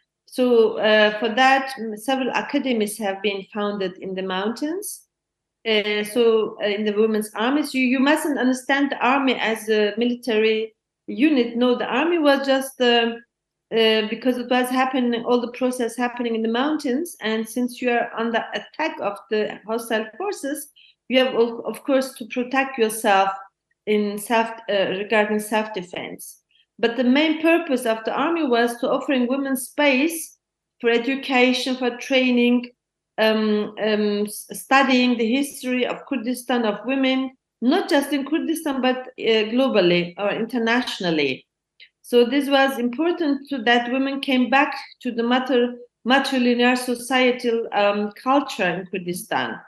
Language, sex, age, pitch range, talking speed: English, female, 40-59, 215-265 Hz, 145 wpm